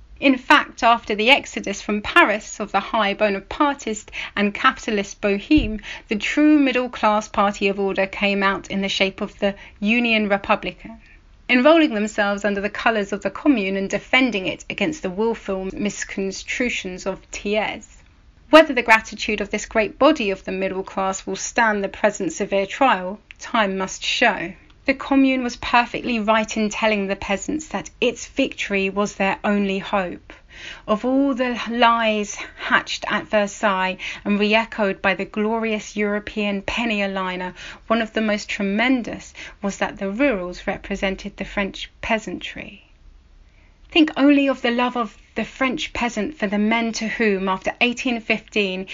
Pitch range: 200-240 Hz